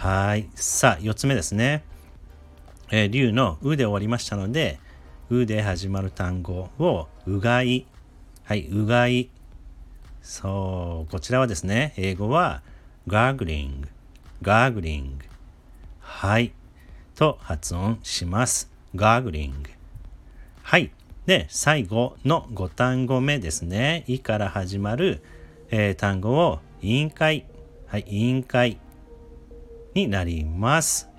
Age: 40-59